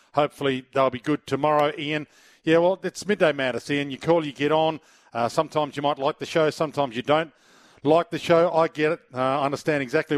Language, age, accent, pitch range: English, 40-59, Australian, 130-165 Hz